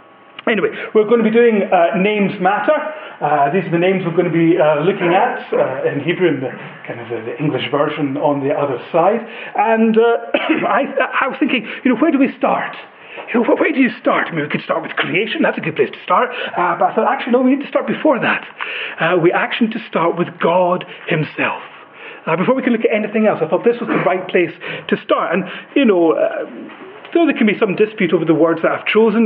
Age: 30-49